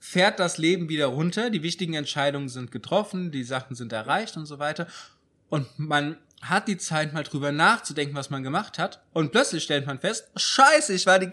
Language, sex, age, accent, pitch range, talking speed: German, male, 20-39, German, 135-180 Hz, 200 wpm